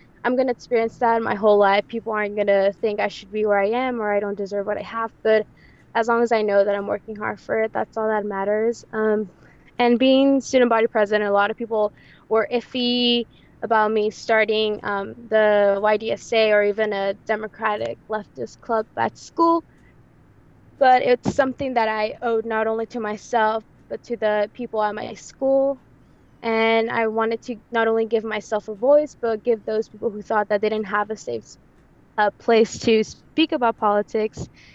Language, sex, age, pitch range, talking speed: English, female, 20-39, 210-240 Hz, 195 wpm